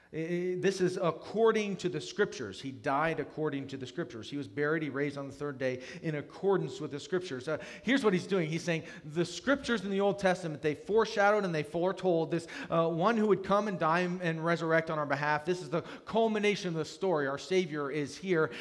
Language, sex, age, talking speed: English, male, 40-59, 220 wpm